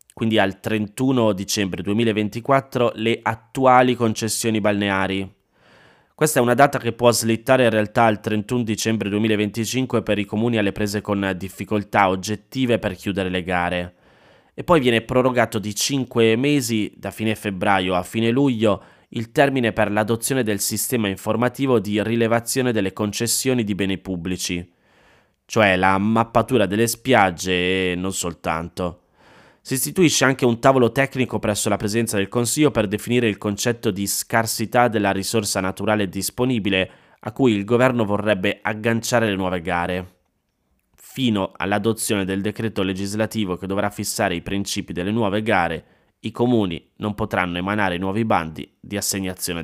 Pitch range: 95-115 Hz